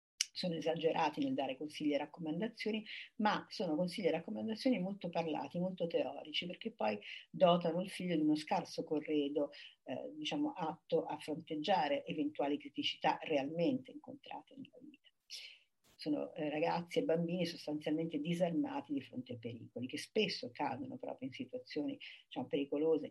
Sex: female